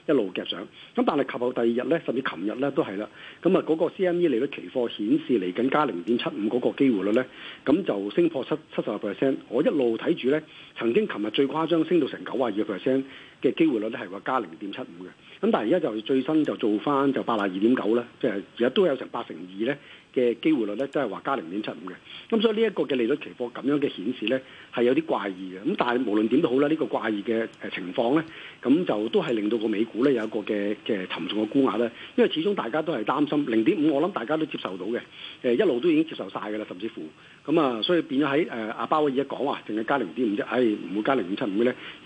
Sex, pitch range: male, 115-160 Hz